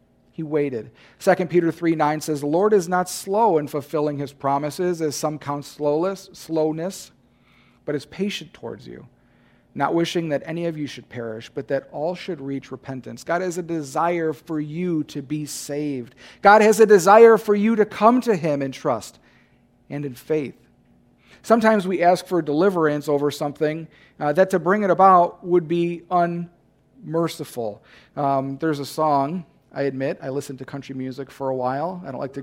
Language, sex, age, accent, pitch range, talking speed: English, male, 40-59, American, 135-180 Hz, 180 wpm